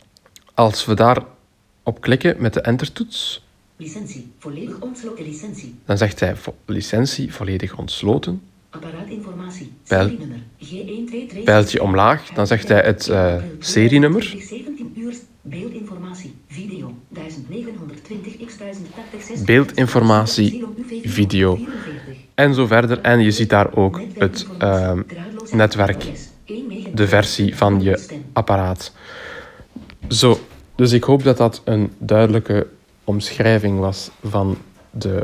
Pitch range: 100-140 Hz